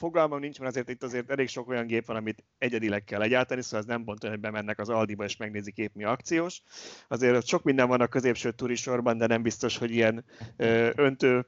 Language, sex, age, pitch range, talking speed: Hungarian, male, 30-49, 110-130 Hz, 215 wpm